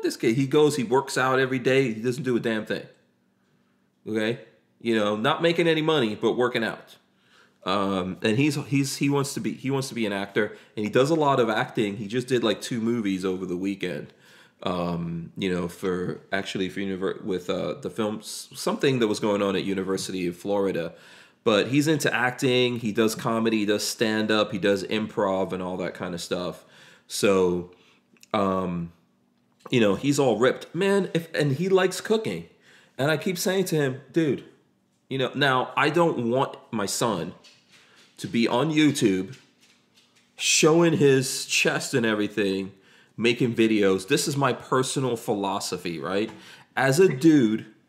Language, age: English, 30-49